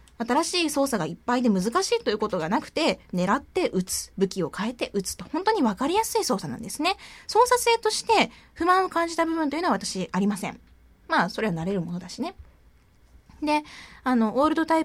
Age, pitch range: 20-39, 195-320 Hz